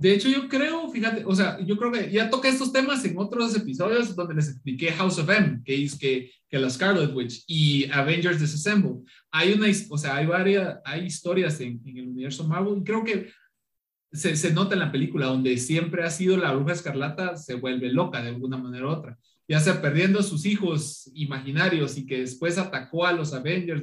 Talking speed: 210 wpm